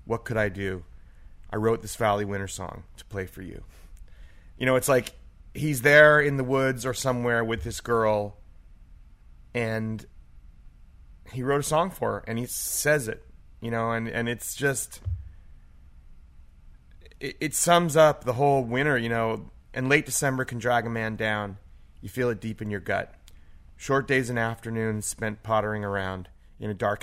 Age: 30-49